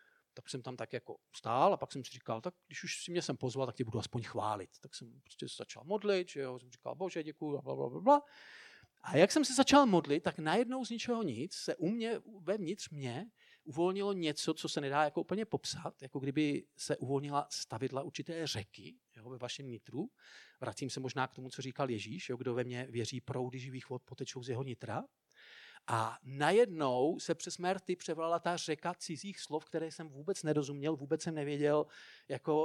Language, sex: Czech, male